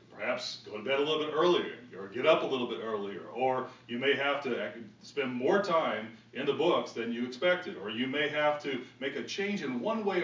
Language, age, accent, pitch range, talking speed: English, 40-59, American, 120-165 Hz, 235 wpm